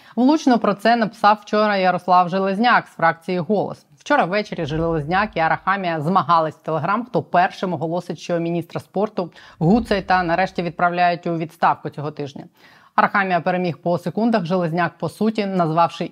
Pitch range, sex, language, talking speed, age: 160-200 Hz, female, Ukrainian, 150 wpm, 20-39